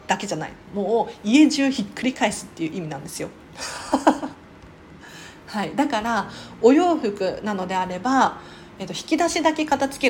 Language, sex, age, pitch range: Japanese, female, 40-59, 175-260 Hz